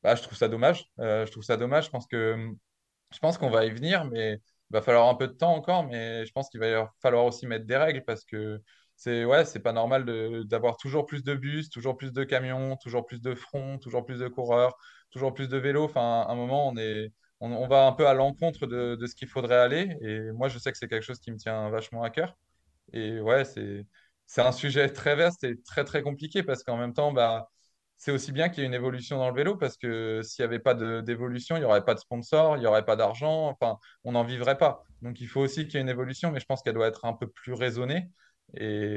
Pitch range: 115-135 Hz